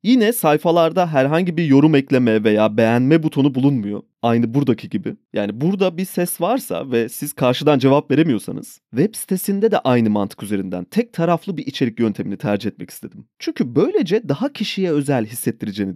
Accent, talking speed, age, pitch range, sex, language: native, 160 wpm, 30-49, 135-205 Hz, male, Turkish